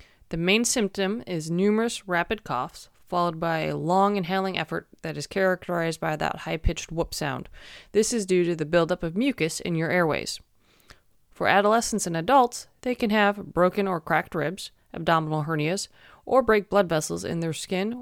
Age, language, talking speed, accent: 30-49, English, 175 wpm, American